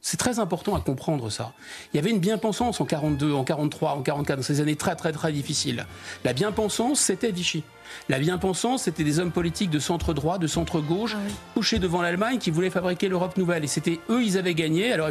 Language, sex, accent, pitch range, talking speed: French, male, French, 160-215 Hz, 210 wpm